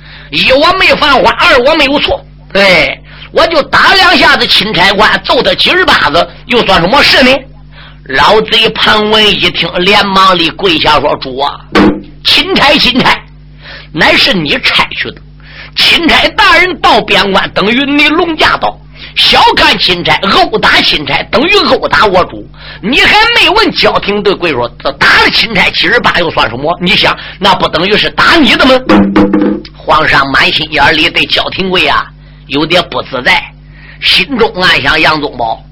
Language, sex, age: Chinese, male, 50-69